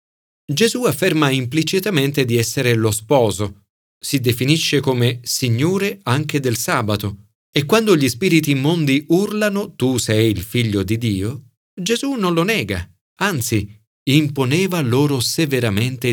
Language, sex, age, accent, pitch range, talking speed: Italian, male, 40-59, native, 110-155 Hz, 125 wpm